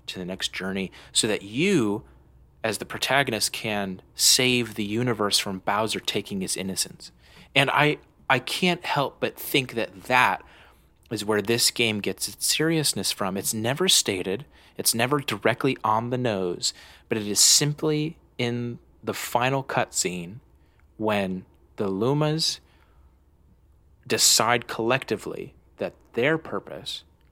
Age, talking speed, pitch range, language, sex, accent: 30-49, 135 wpm, 85-120 Hz, English, male, American